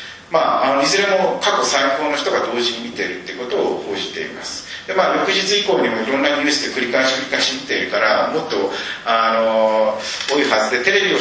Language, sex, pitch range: Japanese, male, 115-150 Hz